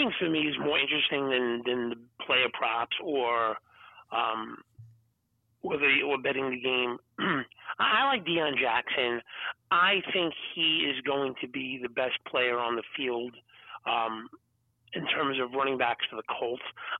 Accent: American